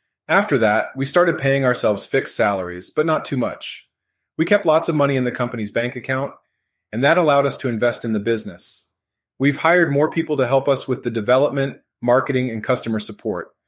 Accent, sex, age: American, male, 30-49